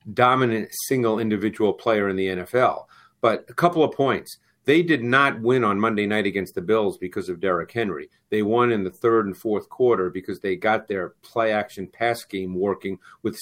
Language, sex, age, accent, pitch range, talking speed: English, male, 50-69, American, 105-140 Hz, 195 wpm